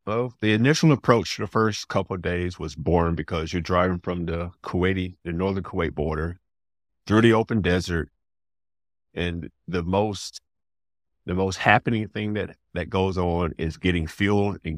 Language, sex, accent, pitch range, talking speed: English, male, American, 85-95 Hz, 160 wpm